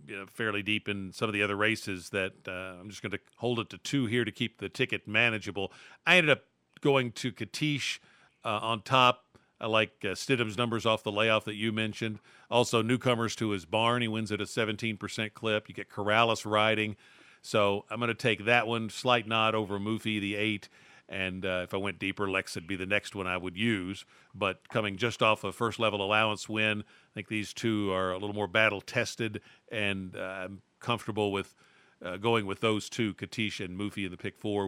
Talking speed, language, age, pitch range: 205 wpm, English, 50-69, 105-130 Hz